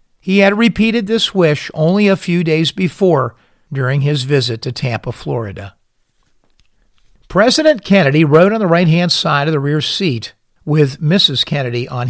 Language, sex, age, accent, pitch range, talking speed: English, male, 50-69, American, 130-180 Hz, 155 wpm